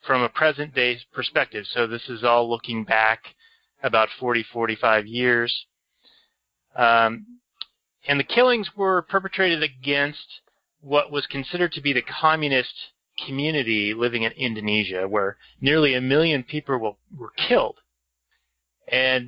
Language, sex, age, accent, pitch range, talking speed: English, male, 30-49, American, 115-145 Hz, 125 wpm